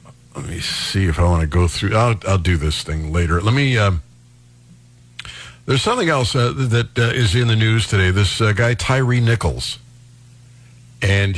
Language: English